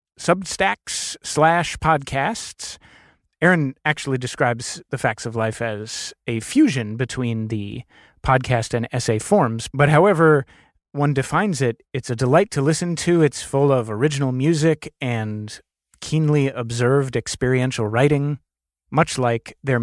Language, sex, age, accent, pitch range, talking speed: English, male, 30-49, American, 120-155 Hz, 130 wpm